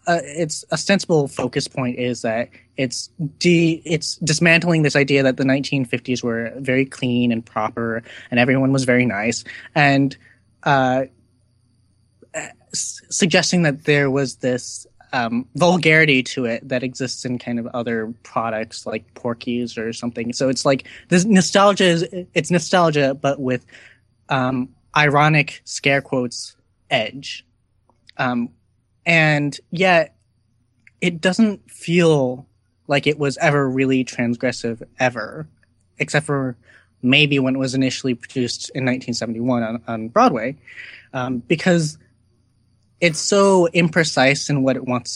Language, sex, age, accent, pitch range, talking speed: English, male, 20-39, American, 120-145 Hz, 135 wpm